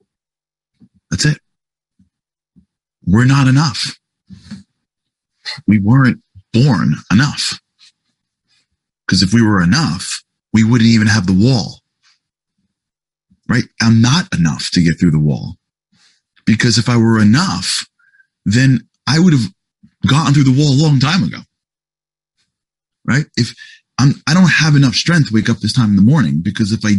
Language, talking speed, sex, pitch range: English, 145 wpm, male, 125-200 Hz